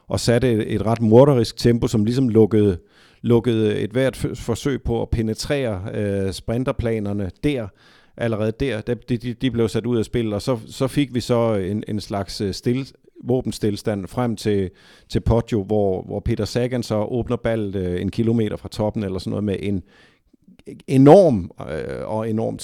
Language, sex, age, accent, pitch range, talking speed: Danish, male, 50-69, native, 100-120 Hz, 170 wpm